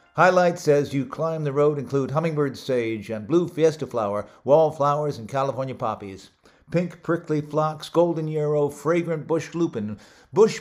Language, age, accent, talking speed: English, 60-79, American, 145 wpm